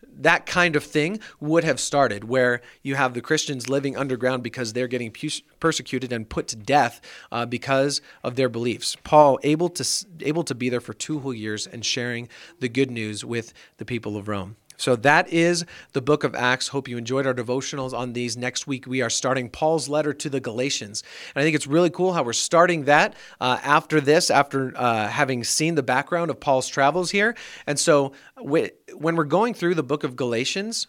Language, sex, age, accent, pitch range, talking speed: English, male, 40-59, American, 120-155 Hz, 210 wpm